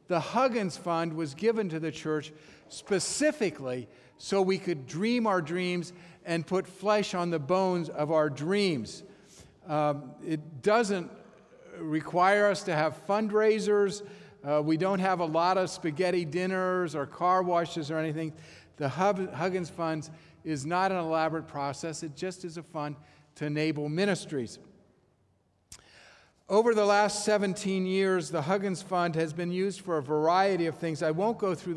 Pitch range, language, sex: 155-190 Hz, English, male